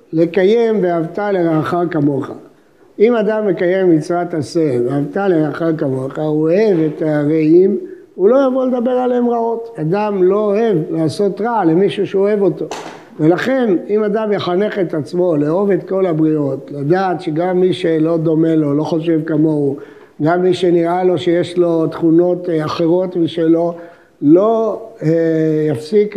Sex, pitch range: male, 160-220 Hz